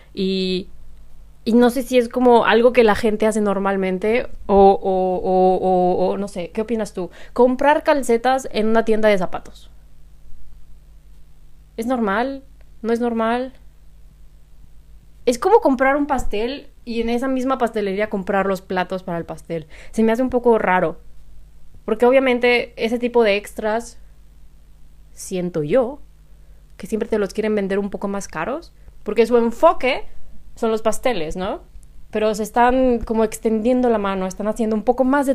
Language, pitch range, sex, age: Spanish, 195-250 Hz, female, 20-39